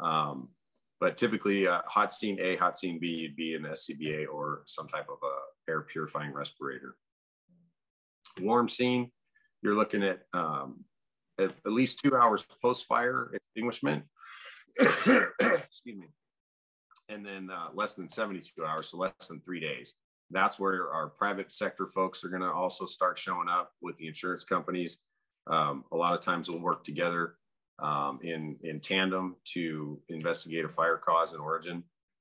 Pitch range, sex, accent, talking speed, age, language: 80-95 Hz, male, American, 160 wpm, 40-59, English